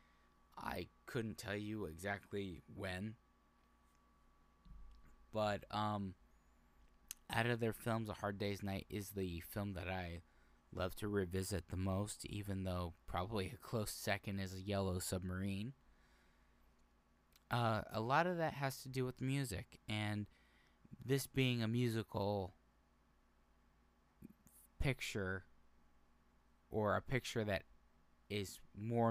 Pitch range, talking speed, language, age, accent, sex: 75-115 Hz, 120 wpm, English, 10-29, American, male